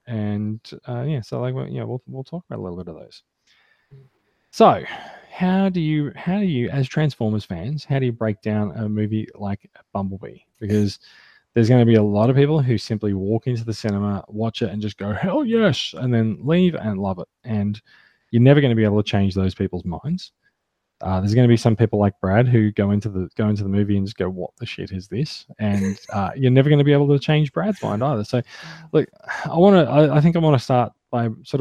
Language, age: English, 20-39